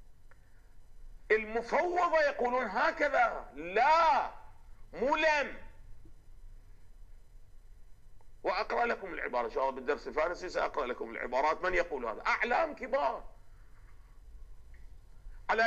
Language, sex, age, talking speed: Arabic, male, 50-69, 85 wpm